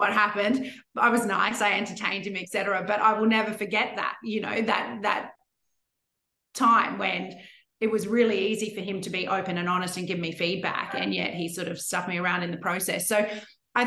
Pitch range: 175-210 Hz